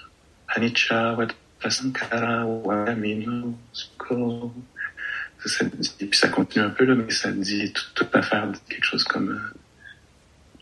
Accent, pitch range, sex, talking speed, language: French, 95-115 Hz, male, 105 wpm, English